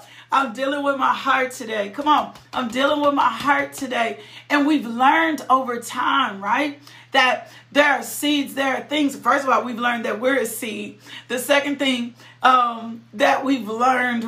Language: English